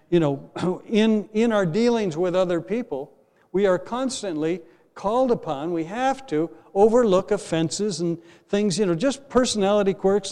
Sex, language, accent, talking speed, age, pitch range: male, English, American, 150 wpm, 60-79, 160-210 Hz